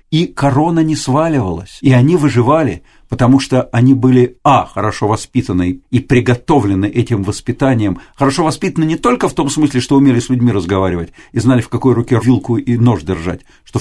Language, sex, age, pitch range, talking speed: Russian, male, 50-69, 115-140 Hz, 175 wpm